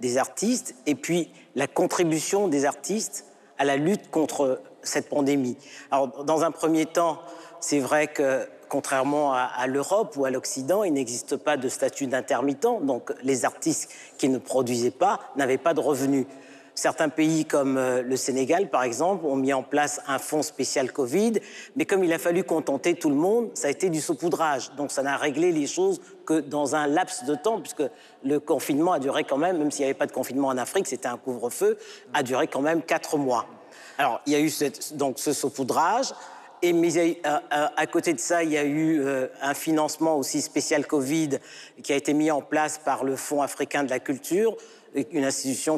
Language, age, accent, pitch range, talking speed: French, 50-69, French, 135-170 Hz, 195 wpm